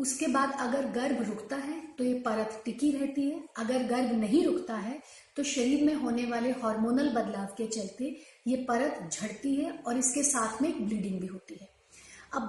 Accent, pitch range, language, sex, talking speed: native, 225-285 Hz, Hindi, female, 190 wpm